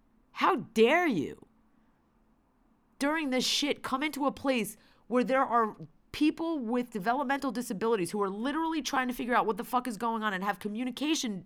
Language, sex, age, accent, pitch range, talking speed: English, female, 30-49, American, 195-260 Hz, 175 wpm